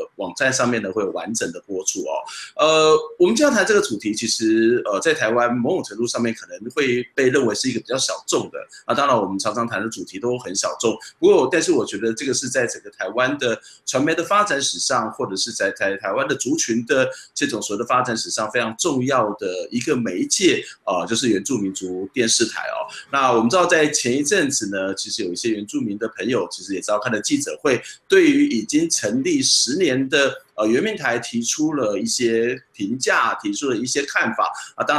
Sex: male